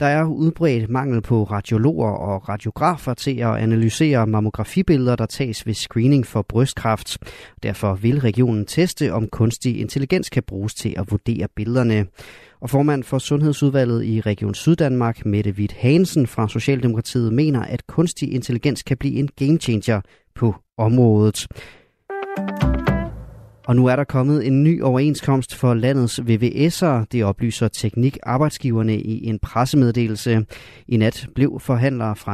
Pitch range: 110-140 Hz